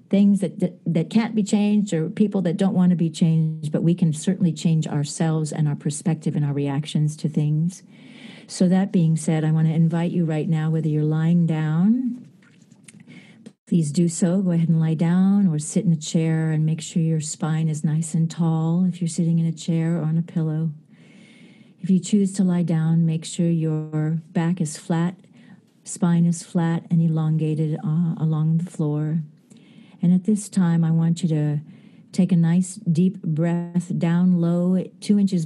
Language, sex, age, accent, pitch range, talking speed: English, female, 40-59, American, 160-195 Hz, 195 wpm